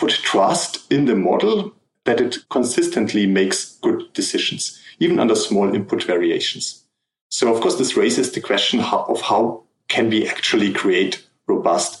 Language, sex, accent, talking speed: English, male, German, 150 wpm